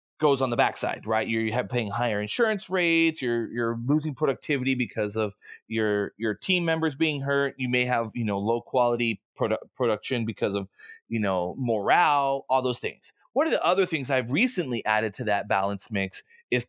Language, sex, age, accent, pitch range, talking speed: English, male, 30-49, American, 115-155 Hz, 195 wpm